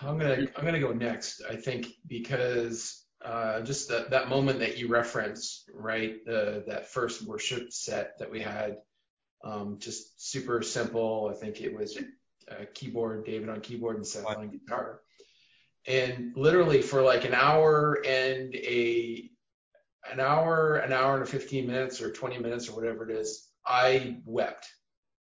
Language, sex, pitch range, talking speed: English, male, 115-140 Hz, 165 wpm